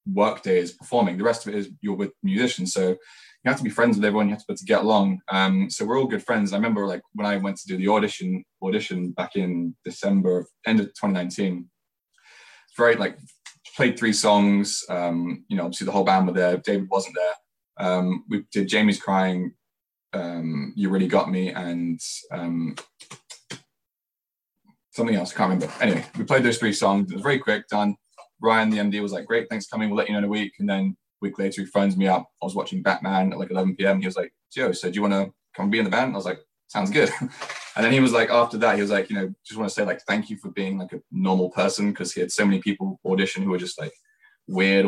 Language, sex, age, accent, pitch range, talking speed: English, male, 20-39, British, 95-110 Hz, 245 wpm